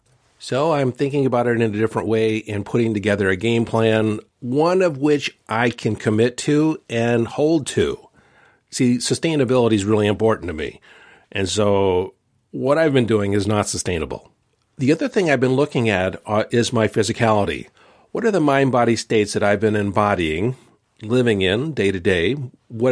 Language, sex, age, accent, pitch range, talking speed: English, male, 50-69, American, 105-130 Hz, 170 wpm